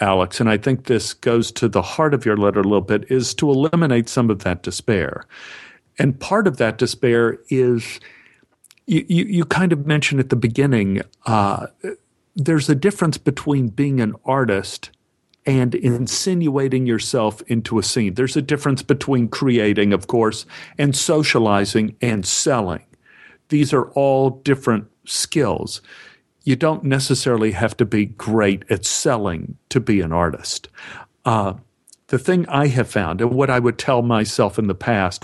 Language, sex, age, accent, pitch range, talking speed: English, male, 50-69, American, 110-135 Hz, 160 wpm